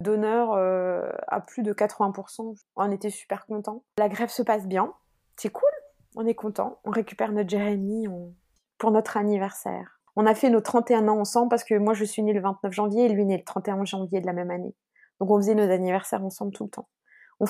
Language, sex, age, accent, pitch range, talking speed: French, female, 20-39, French, 185-215 Hz, 225 wpm